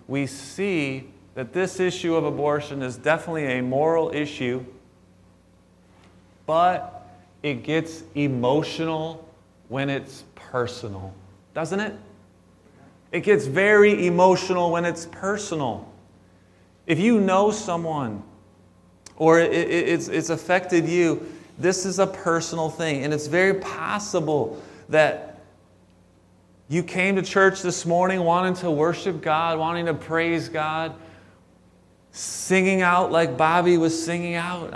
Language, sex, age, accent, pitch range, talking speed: English, male, 30-49, American, 125-175 Hz, 115 wpm